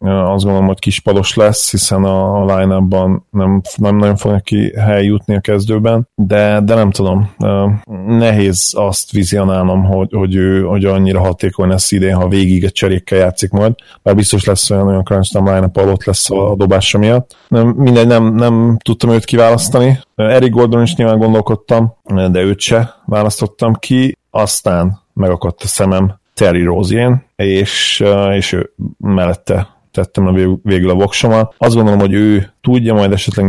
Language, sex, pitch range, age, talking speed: Hungarian, male, 95-105 Hz, 30-49, 160 wpm